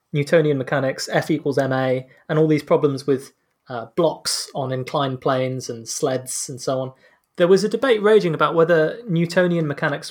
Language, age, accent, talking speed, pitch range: English, 20-39, British, 170 wpm, 135-170 Hz